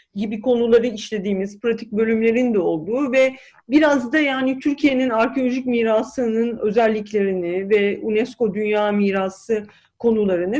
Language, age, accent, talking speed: Turkish, 40-59, native, 115 wpm